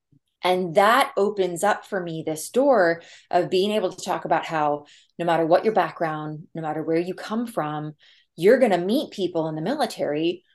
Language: English